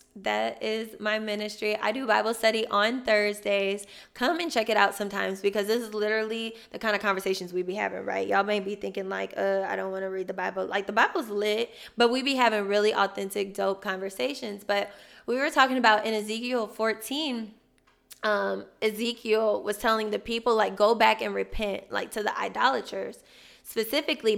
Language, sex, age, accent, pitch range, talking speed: English, female, 10-29, American, 205-240 Hz, 190 wpm